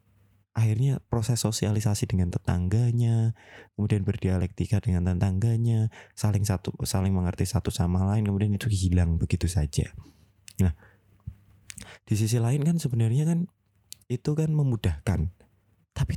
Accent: native